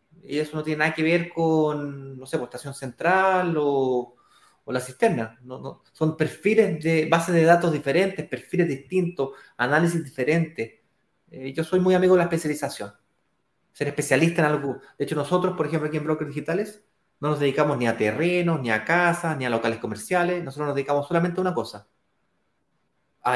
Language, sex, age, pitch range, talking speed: Spanish, male, 30-49, 135-190 Hz, 180 wpm